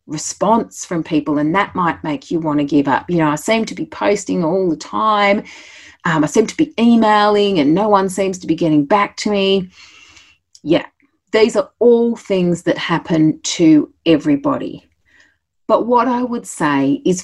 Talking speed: 185 wpm